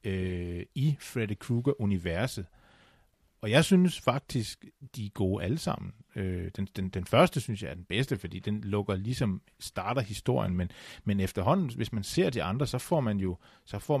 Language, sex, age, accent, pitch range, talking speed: Danish, male, 40-59, native, 95-115 Hz, 185 wpm